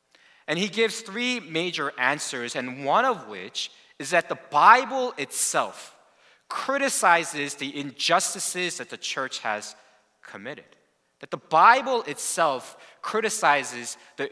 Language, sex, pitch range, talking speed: English, male, 140-210 Hz, 120 wpm